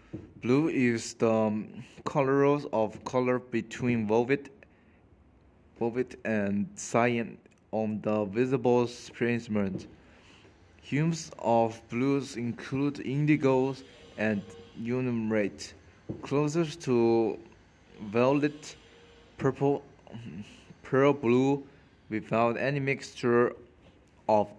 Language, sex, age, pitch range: Chinese, male, 20-39, 105-130 Hz